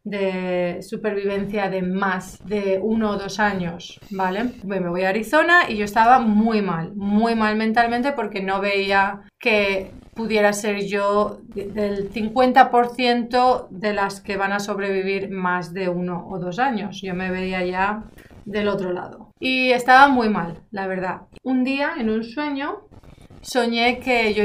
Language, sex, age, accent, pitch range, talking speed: Spanish, female, 30-49, Spanish, 200-240 Hz, 155 wpm